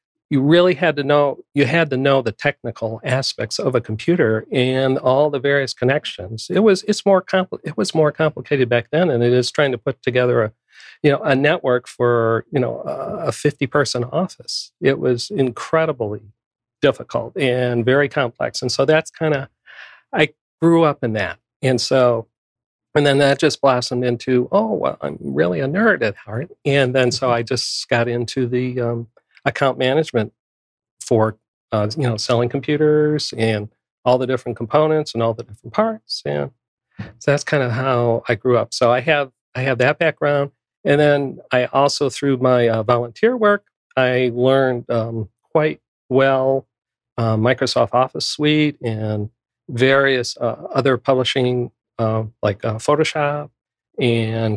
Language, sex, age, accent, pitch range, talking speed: English, male, 40-59, American, 120-145 Hz, 170 wpm